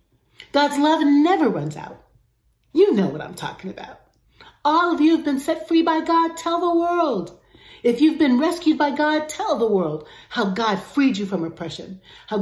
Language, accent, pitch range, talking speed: English, American, 180-285 Hz, 190 wpm